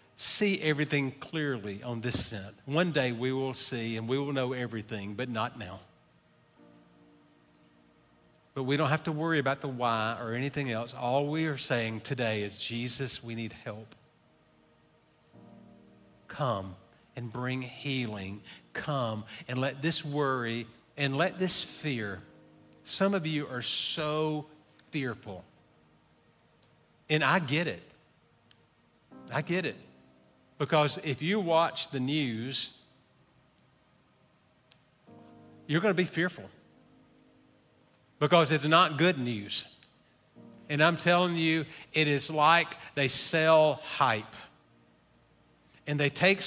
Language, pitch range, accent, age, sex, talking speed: English, 115-155 Hz, American, 50-69, male, 125 wpm